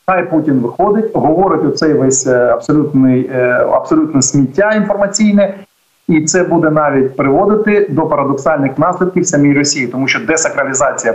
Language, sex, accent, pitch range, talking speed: Ukrainian, male, native, 140-185 Hz, 120 wpm